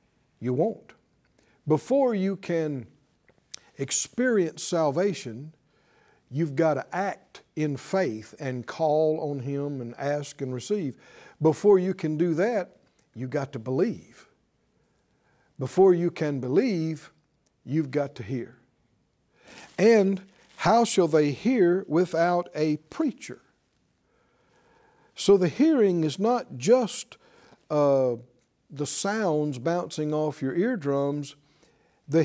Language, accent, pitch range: English, American, 150-200 Hz